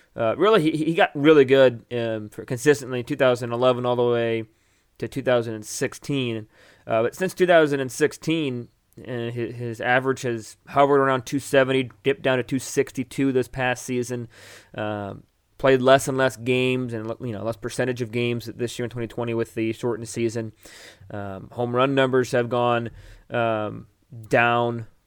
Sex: male